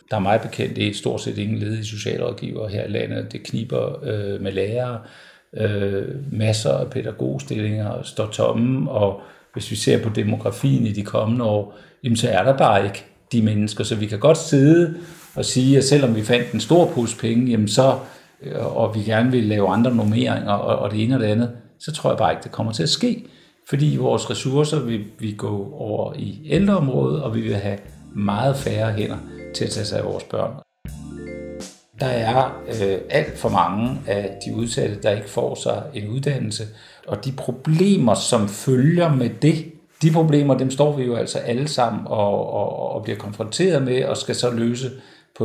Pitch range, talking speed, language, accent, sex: 105-135 Hz, 195 wpm, Danish, native, male